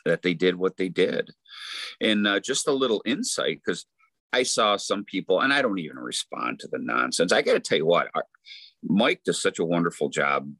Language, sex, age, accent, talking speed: English, male, 40-59, American, 205 wpm